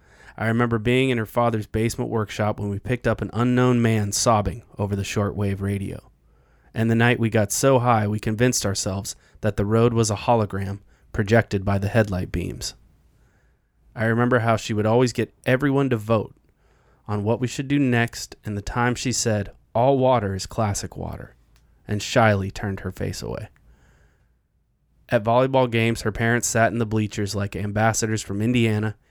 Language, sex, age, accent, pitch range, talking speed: English, male, 20-39, American, 100-115 Hz, 175 wpm